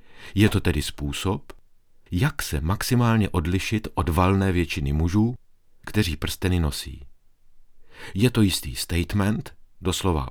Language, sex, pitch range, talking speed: Czech, male, 80-105 Hz, 115 wpm